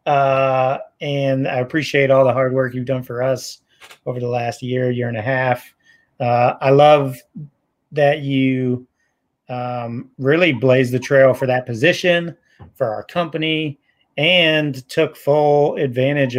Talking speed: 145 wpm